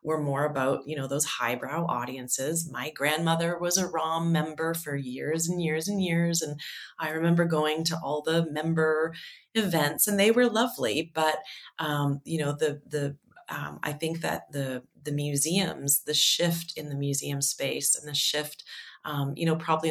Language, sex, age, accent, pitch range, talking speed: English, female, 30-49, American, 140-165 Hz, 180 wpm